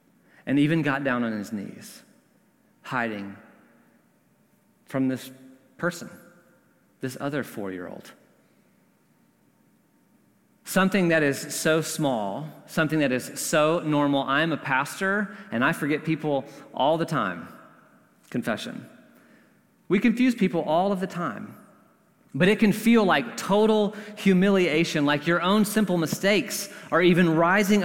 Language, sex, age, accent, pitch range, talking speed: English, male, 30-49, American, 150-215 Hz, 125 wpm